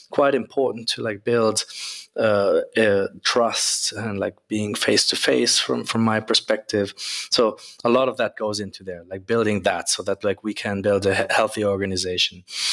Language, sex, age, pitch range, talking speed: English, male, 20-39, 95-110 Hz, 185 wpm